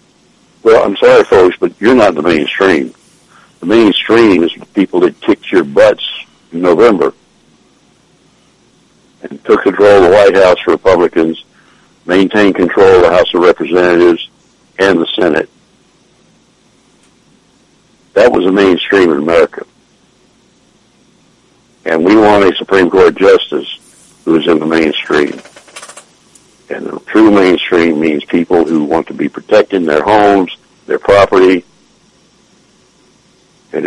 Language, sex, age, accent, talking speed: English, male, 60-79, American, 125 wpm